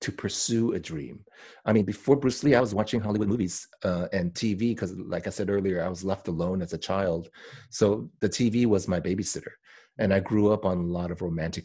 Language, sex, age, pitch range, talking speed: English, male, 30-49, 90-125 Hz, 225 wpm